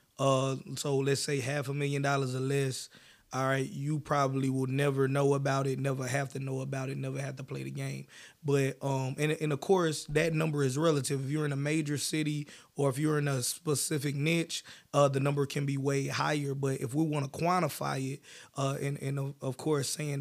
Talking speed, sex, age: 220 wpm, male, 20-39